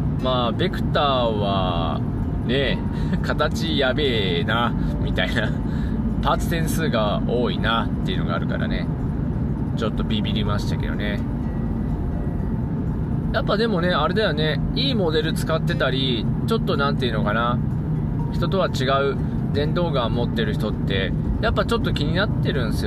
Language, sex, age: Japanese, male, 20-39